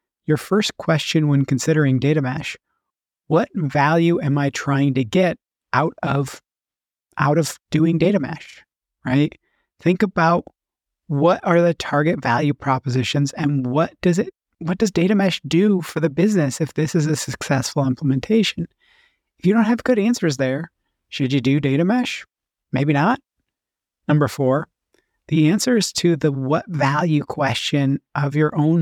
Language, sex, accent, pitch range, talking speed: English, male, American, 140-175 Hz, 155 wpm